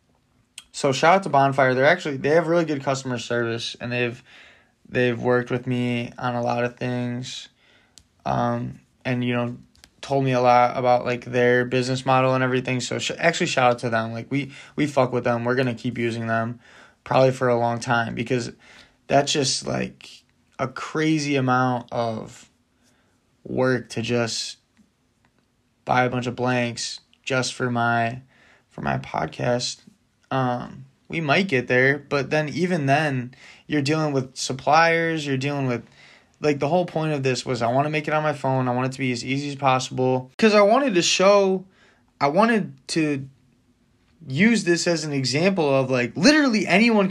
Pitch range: 120-150 Hz